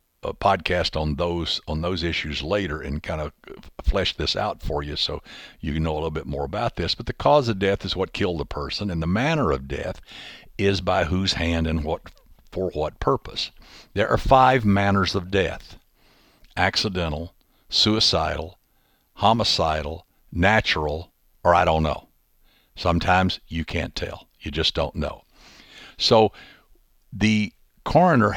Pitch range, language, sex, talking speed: 80-110 Hz, English, male, 160 wpm